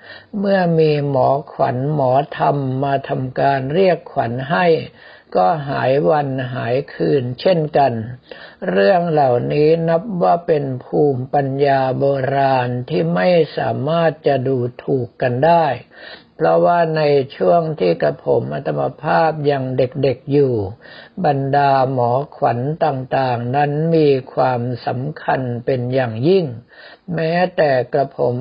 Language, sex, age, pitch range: Thai, male, 60-79, 130-160 Hz